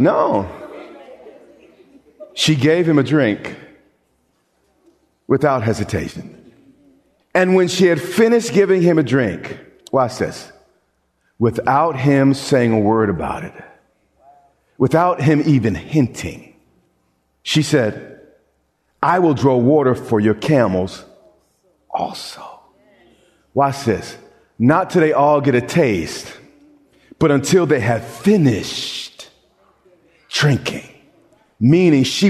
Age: 40-59